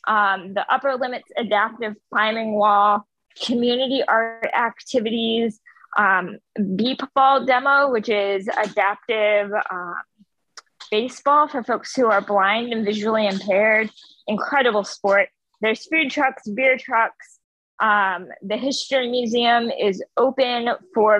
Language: English